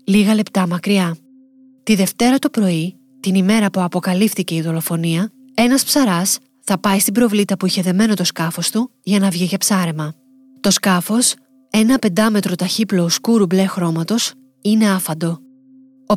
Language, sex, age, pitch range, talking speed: Greek, female, 20-39, 180-240 Hz, 150 wpm